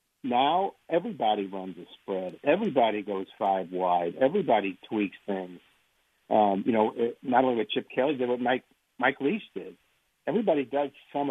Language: English